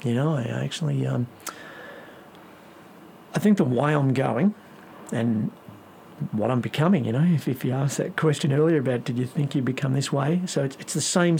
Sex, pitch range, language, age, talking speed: male, 130-165 Hz, English, 50-69, 195 wpm